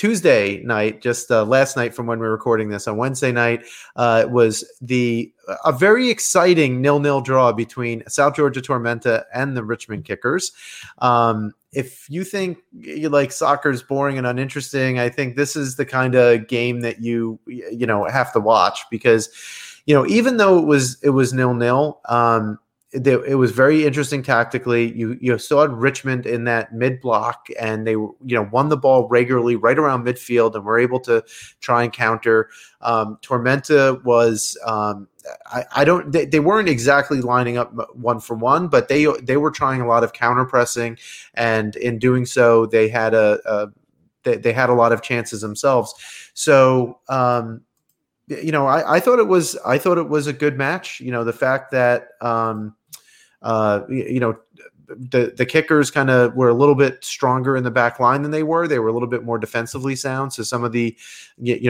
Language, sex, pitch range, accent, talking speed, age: English, male, 115-135 Hz, American, 195 wpm, 30-49